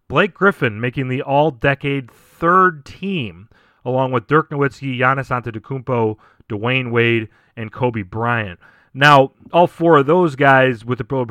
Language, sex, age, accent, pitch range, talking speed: English, male, 30-49, American, 110-140 Hz, 145 wpm